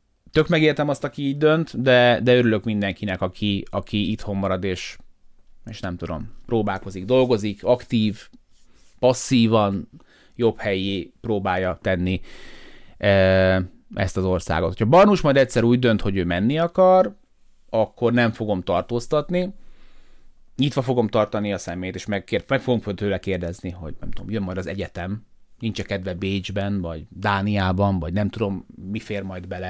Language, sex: Hungarian, male